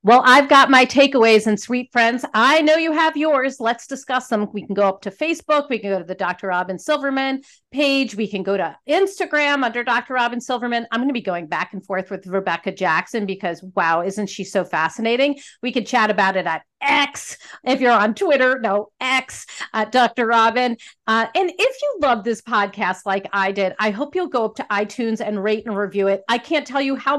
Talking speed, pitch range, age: 220 wpm, 205-275 Hz, 40-59